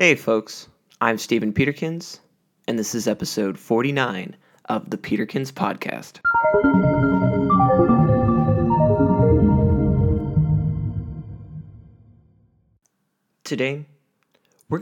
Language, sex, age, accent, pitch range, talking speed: English, male, 20-39, American, 110-160 Hz, 65 wpm